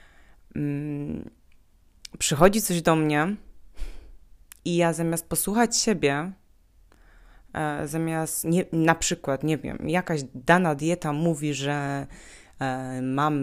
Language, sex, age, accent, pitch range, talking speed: Polish, female, 20-39, native, 145-185 Hz, 95 wpm